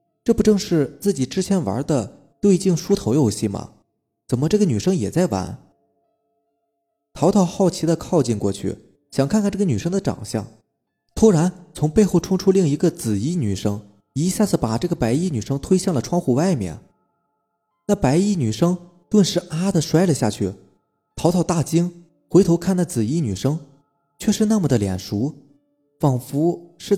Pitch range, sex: 125-180 Hz, male